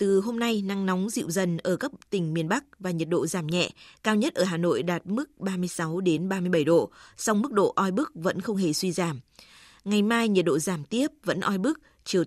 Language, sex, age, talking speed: Vietnamese, female, 20-39, 235 wpm